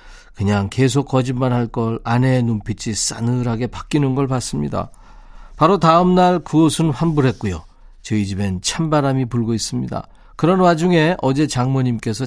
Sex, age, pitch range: male, 40-59, 120-160 Hz